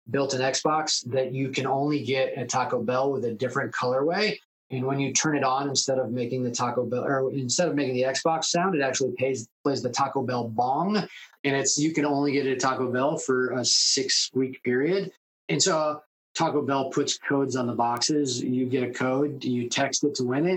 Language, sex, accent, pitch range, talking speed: English, male, American, 125-150 Hz, 215 wpm